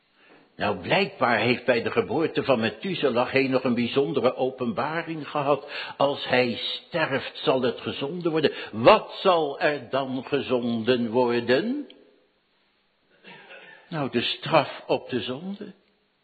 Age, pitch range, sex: 60-79, 150-210 Hz, male